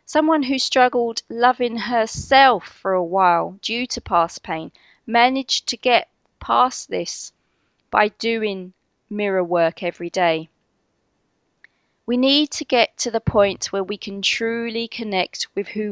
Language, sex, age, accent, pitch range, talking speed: English, female, 30-49, British, 180-235 Hz, 140 wpm